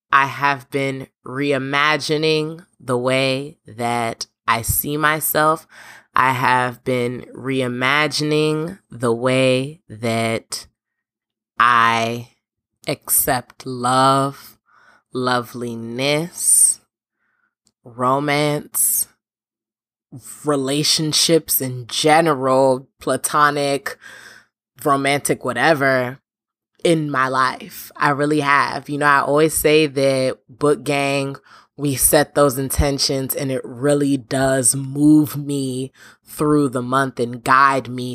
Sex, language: female, English